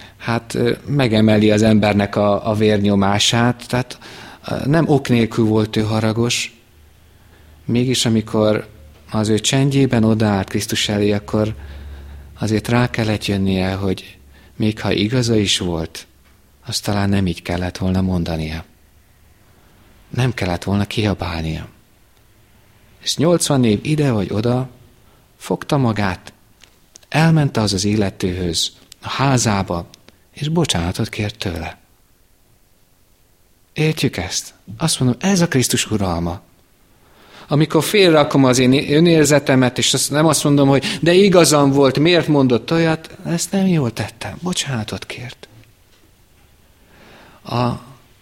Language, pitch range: Hungarian, 95-125 Hz